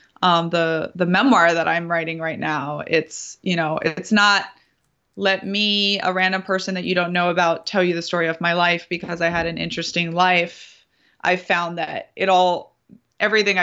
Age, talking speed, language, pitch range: 20-39, 190 wpm, English, 165-190 Hz